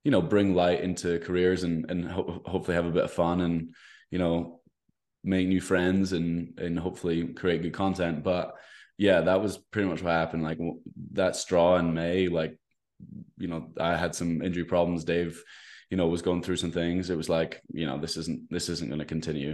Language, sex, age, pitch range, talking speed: English, male, 20-39, 85-95 Hz, 210 wpm